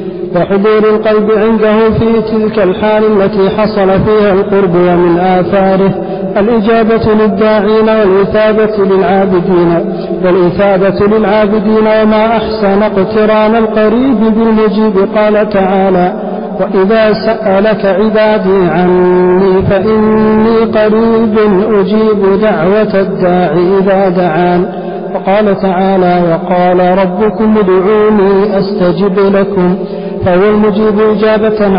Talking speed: 85 wpm